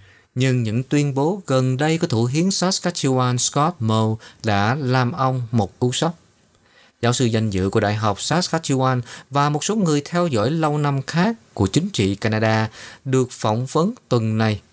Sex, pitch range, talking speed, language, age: male, 105-145 Hz, 180 wpm, Vietnamese, 20-39